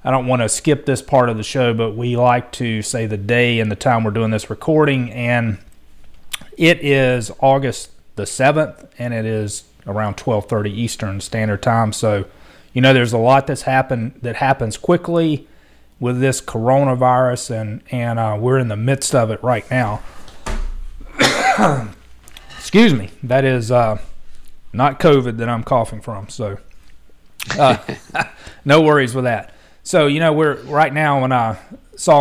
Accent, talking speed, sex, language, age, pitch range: American, 165 wpm, male, English, 30-49, 110-130 Hz